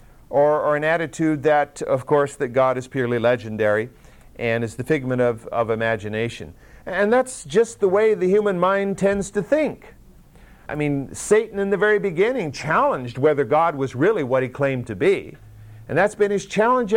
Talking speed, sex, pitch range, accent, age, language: 185 wpm, male, 130-195 Hz, American, 50-69, English